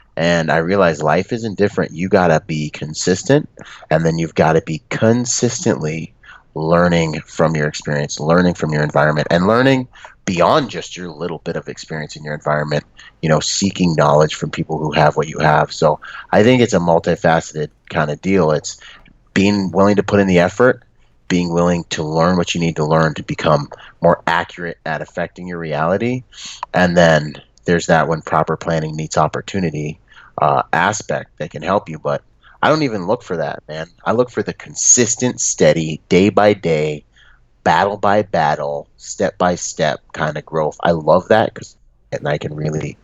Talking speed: 185 wpm